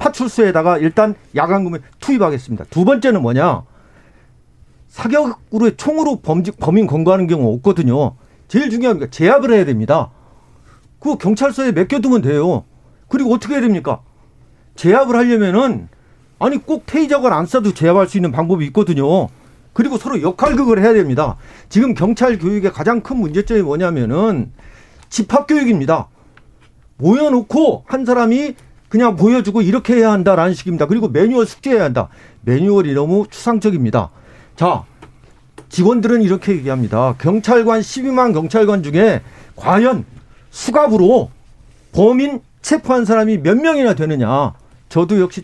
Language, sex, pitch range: Korean, male, 150-235 Hz